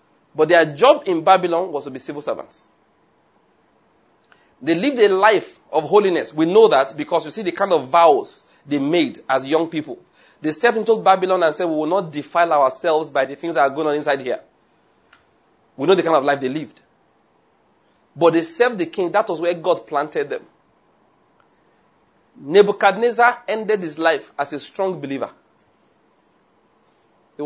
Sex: male